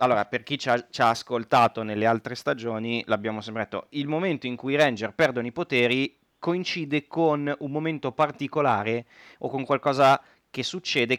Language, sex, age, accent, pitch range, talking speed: Italian, male, 30-49, native, 115-140 Hz, 175 wpm